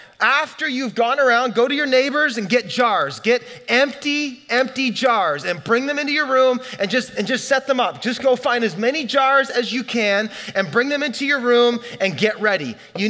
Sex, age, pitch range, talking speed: male, 30-49, 210-255 Hz, 215 wpm